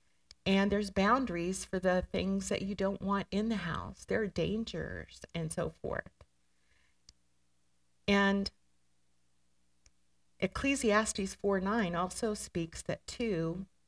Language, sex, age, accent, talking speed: English, female, 50-69, American, 115 wpm